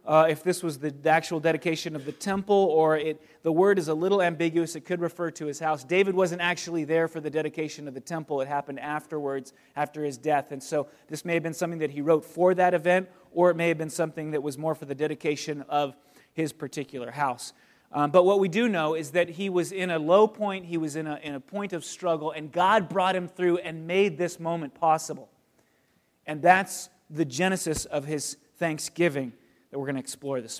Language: English